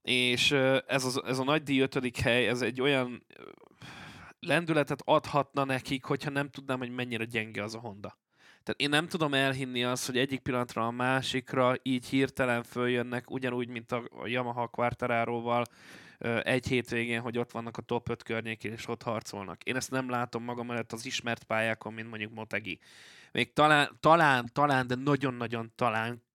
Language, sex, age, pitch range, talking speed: Hungarian, male, 20-39, 110-130 Hz, 165 wpm